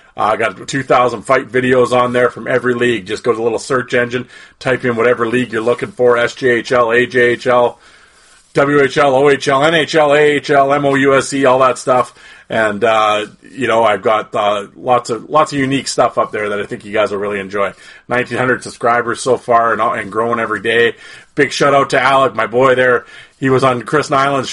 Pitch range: 110-130 Hz